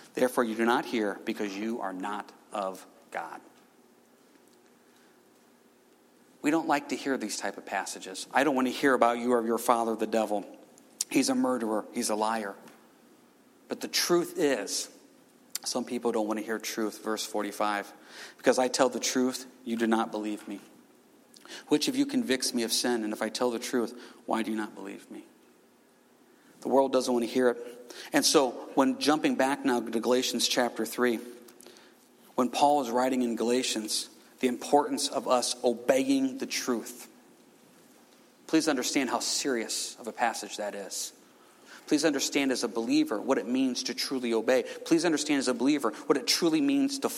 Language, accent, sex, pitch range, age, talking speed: English, American, male, 115-145 Hz, 40-59, 180 wpm